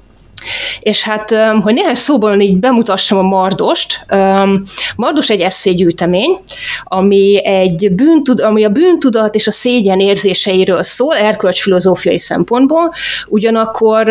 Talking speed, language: 100 wpm, Hungarian